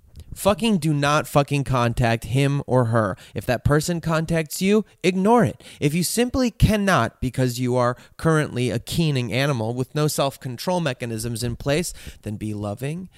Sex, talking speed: male, 160 wpm